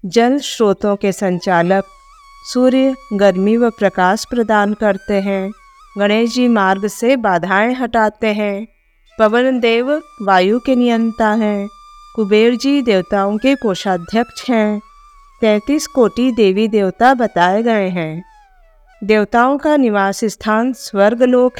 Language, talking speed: Hindi, 115 wpm